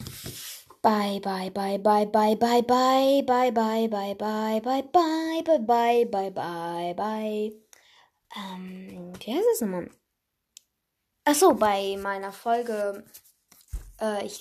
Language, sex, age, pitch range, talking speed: German, female, 20-39, 200-275 Hz, 95 wpm